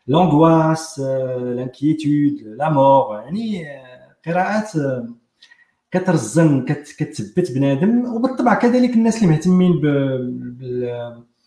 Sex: male